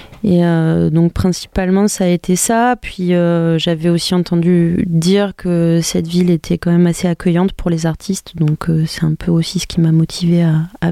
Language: French